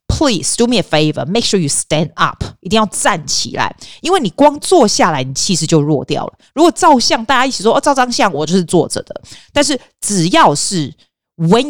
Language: Chinese